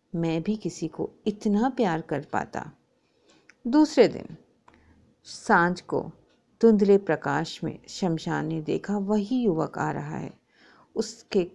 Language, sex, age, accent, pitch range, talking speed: Hindi, female, 50-69, native, 180-255 Hz, 120 wpm